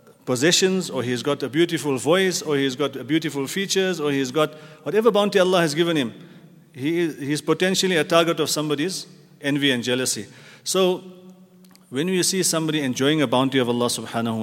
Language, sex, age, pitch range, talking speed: English, male, 40-59, 130-165 Hz, 180 wpm